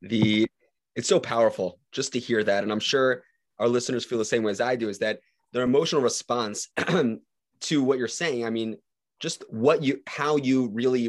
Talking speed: 200 wpm